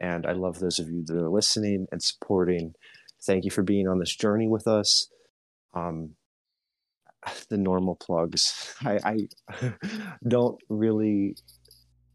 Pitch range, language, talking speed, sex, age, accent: 90-105 Hz, English, 140 wpm, male, 20-39, American